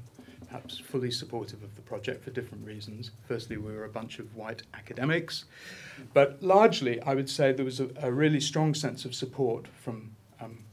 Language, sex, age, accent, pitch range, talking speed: English, male, 40-59, British, 115-140 Hz, 185 wpm